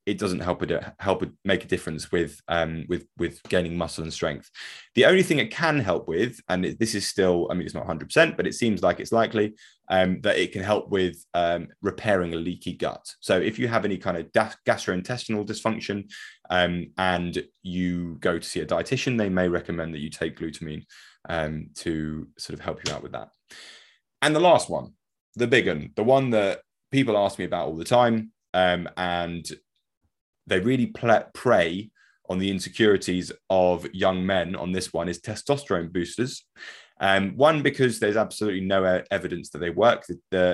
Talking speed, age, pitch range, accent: 190 wpm, 20-39, 85-110 Hz, British